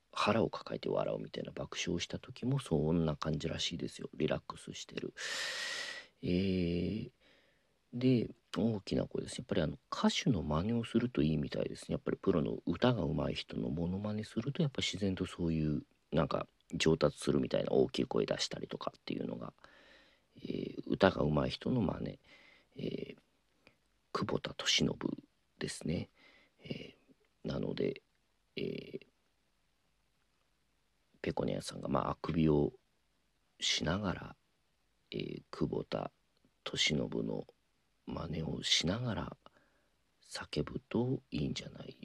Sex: male